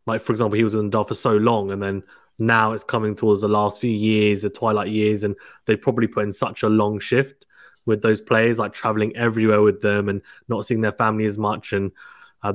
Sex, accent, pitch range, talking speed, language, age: male, British, 105-115 Hz, 235 wpm, English, 20-39